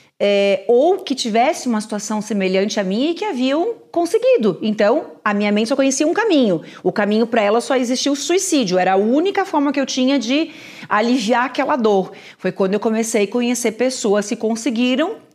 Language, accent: Portuguese, Brazilian